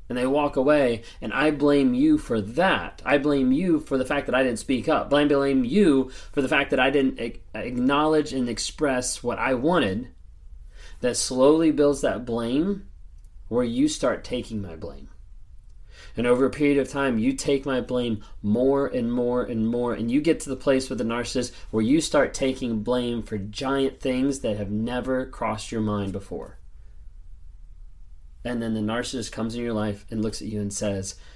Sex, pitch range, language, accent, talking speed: male, 95-130 Hz, English, American, 190 wpm